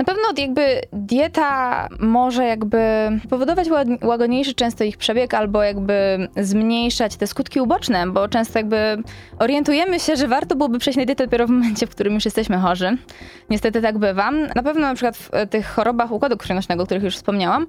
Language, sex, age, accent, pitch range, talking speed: Polish, female, 20-39, native, 195-240 Hz, 180 wpm